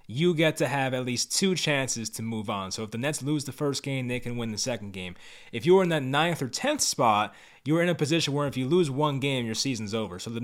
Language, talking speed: English, 275 wpm